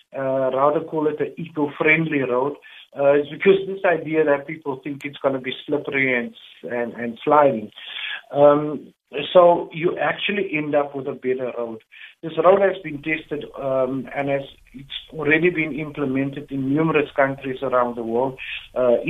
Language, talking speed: English, 165 wpm